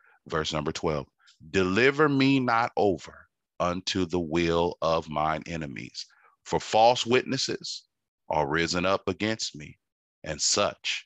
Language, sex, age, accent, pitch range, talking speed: English, male, 30-49, American, 80-95 Hz, 125 wpm